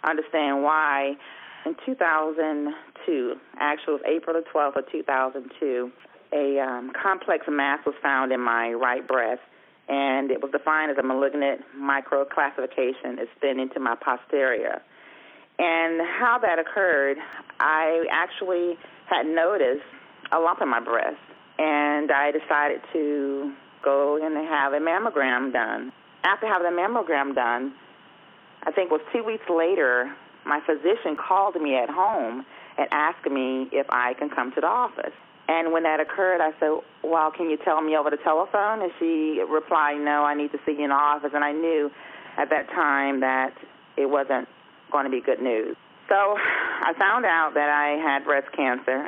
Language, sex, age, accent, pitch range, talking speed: English, female, 40-59, American, 140-160 Hz, 170 wpm